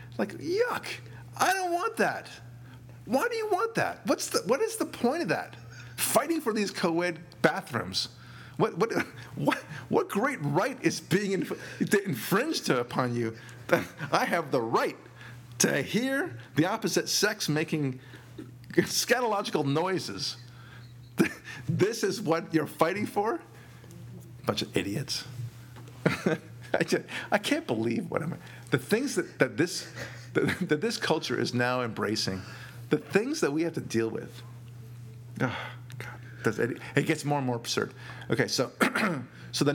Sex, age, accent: male, 50-69, American